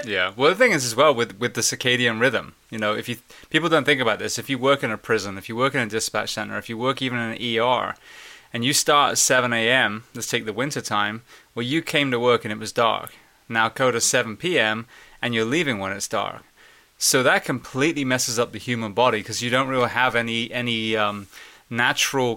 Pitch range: 110-125 Hz